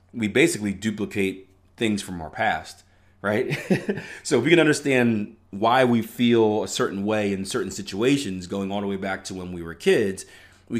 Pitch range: 95-110 Hz